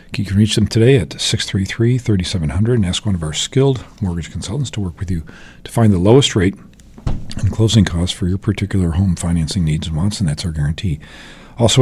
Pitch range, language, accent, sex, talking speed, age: 85-110 Hz, English, American, male, 205 wpm, 50-69